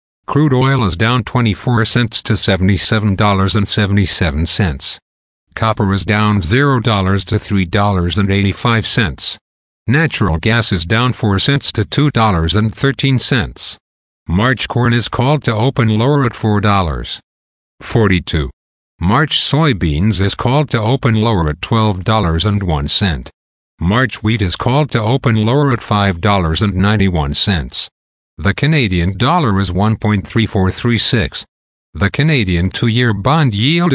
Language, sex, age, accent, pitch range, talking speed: English, male, 50-69, American, 95-120 Hz, 145 wpm